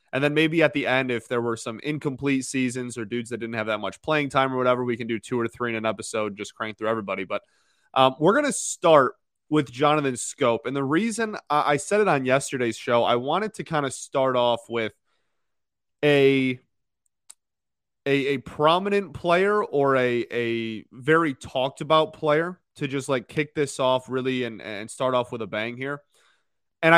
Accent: American